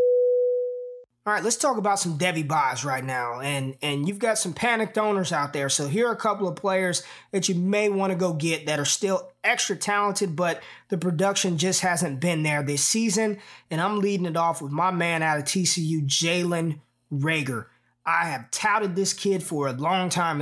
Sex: male